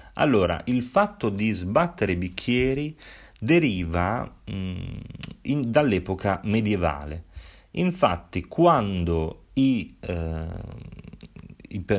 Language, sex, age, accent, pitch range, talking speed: Italian, male, 30-49, native, 85-115 Hz, 65 wpm